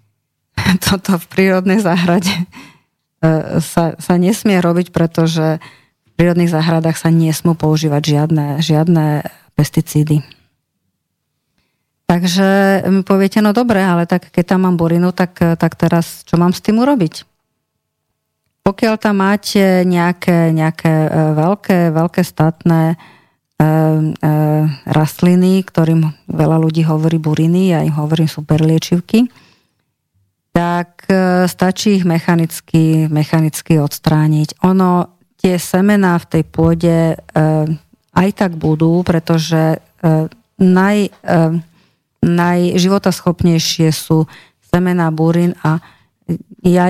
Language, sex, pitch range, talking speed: Slovak, female, 155-180 Hz, 105 wpm